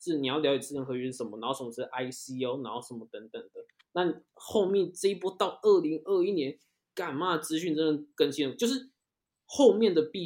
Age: 20-39